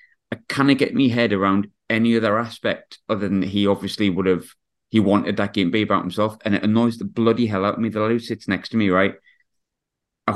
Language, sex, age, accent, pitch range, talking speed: English, male, 30-49, British, 100-115 Hz, 245 wpm